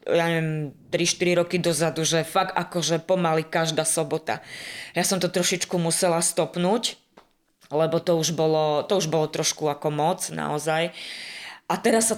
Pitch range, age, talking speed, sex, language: 155-180 Hz, 20-39, 150 wpm, female, Slovak